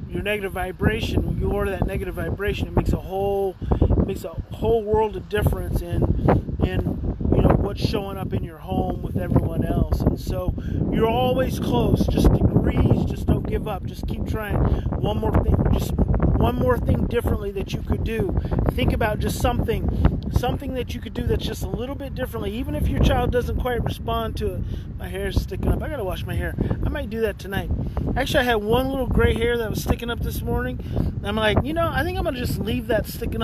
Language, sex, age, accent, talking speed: English, male, 30-49, American, 220 wpm